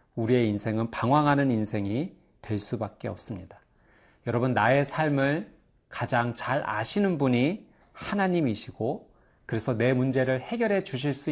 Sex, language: male, Korean